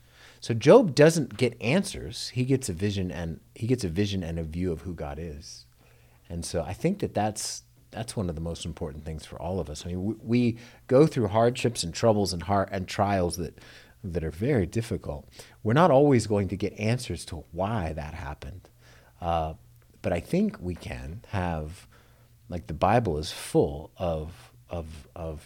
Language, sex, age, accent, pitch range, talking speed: English, male, 40-59, American, 80-115 Hz, 195 wpm